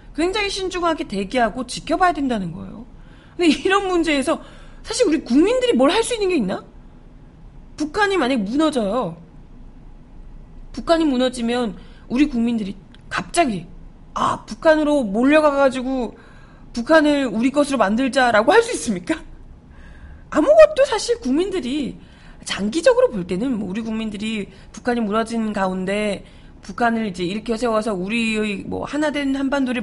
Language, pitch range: Korean, 220-320 Hz